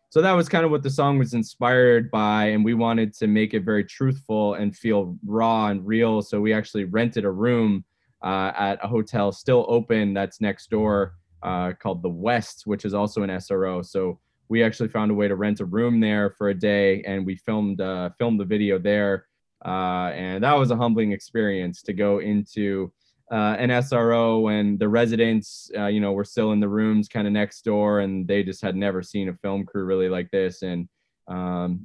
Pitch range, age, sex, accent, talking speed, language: 100-115 Hz, 20-39, male, American, 210 wpm, English